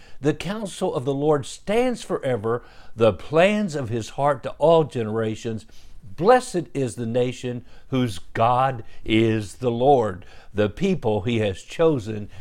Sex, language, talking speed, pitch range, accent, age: male, English, 140 wpm, 110-145 Hz, American, 60-79